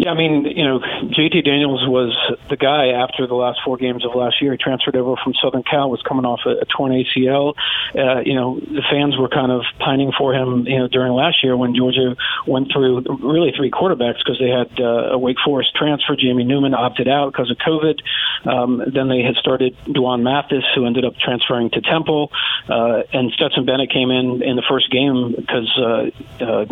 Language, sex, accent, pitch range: English, male, American, 125-140 Hz